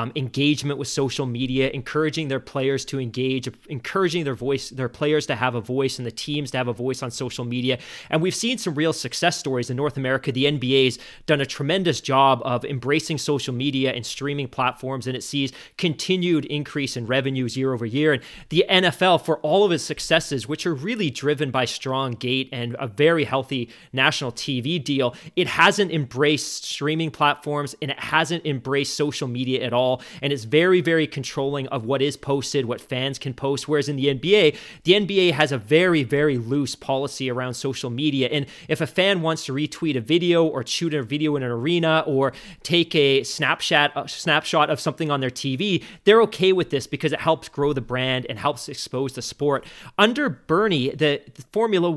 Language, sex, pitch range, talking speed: English, male, 130-155 Hz, 195 wpm